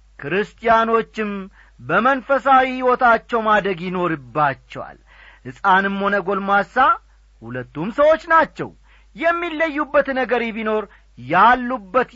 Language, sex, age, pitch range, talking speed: Amharic, male, 40-59, 170-265 Hz, 70 wpm